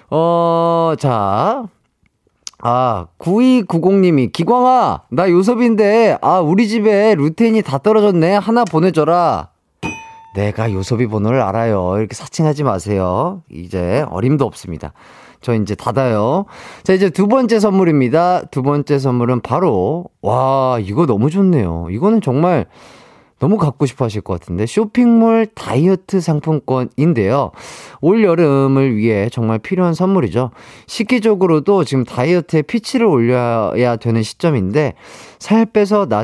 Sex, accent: male, native